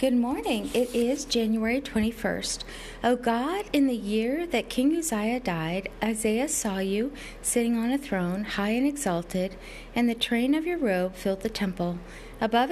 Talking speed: 175 wpm